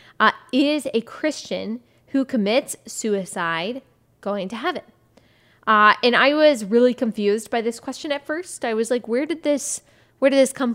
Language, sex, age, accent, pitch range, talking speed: English, female, 20-39, American, 205-245 Hz, 165 wpm